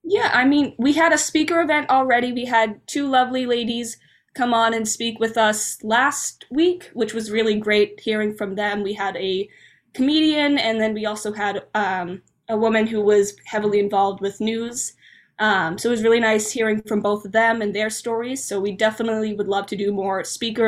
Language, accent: English, American